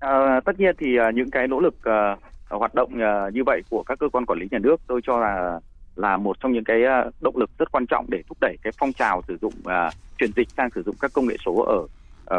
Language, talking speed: Vietnamese, 265 wpm